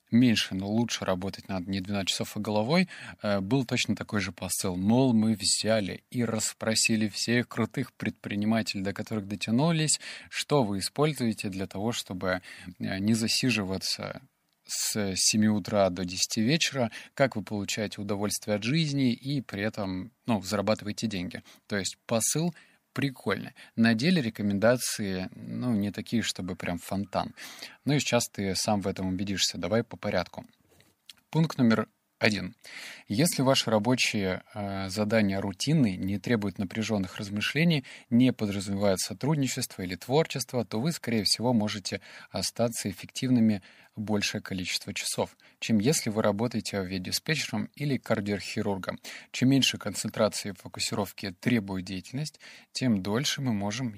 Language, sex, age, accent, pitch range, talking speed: Russian, male, 20-39, native, 100-120 Hz, 135 wpm